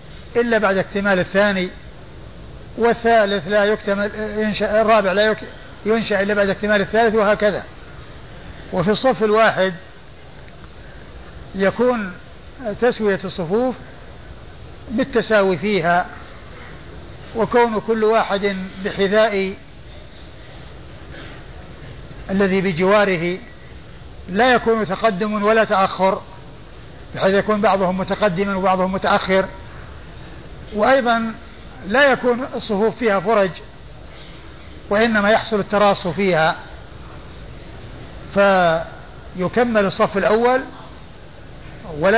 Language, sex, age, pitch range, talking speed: Arabic, male, 60-79, 195-225 Hz, 80 wpm